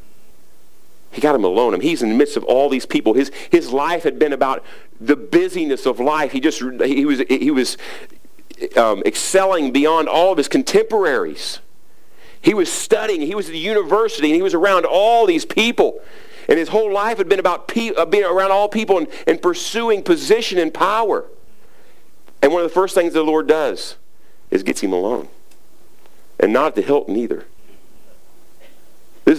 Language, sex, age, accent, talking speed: English, male, 50-69, American, 180 wpm